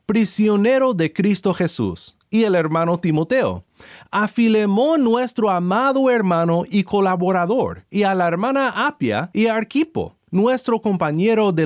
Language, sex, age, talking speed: Spanish, male, 30-49, 135 wpm